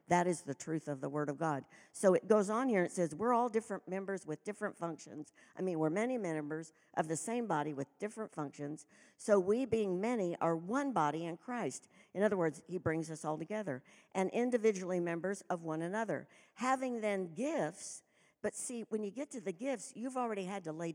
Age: 60-79